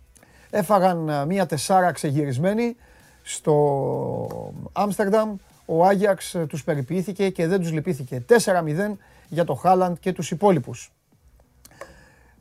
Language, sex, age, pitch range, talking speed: Greek, male, 30-49, 140-190 Hz, 105 wpm